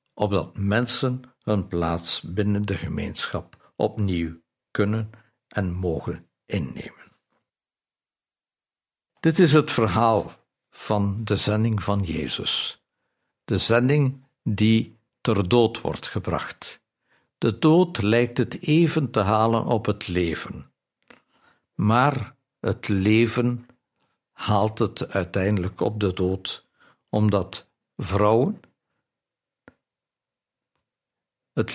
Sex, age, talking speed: male, 60-79, 95 wpm